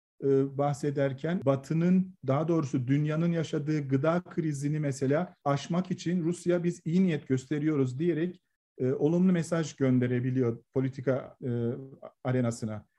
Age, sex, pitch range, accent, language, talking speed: 40-59, male, 130-160 Hz, native, Turkish, 110 wpm